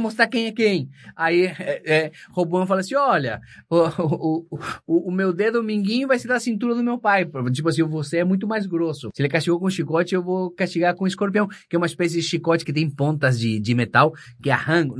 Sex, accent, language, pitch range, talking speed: male, Brazilian, Portuguese, 130-190 Hz, 230 wpm